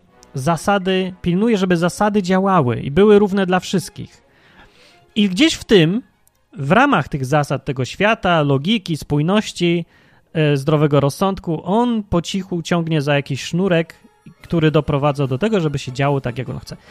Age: 30-49